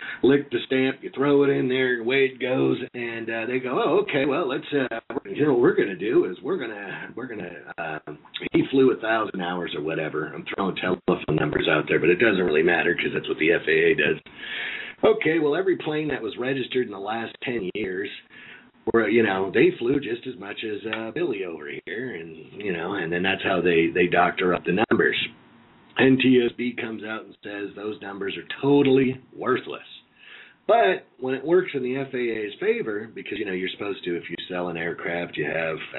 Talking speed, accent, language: 215 wpm, American, English